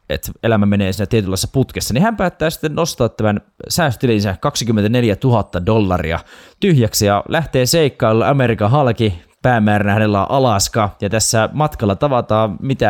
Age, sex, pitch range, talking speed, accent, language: 20-39, male, 95-125 Hz, 145 wpm, native, Finnish